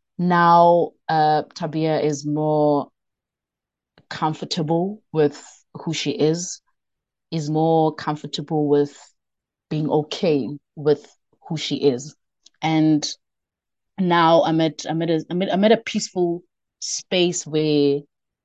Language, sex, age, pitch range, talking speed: English, female, 30-49, 145-175 Hz, 115 wpm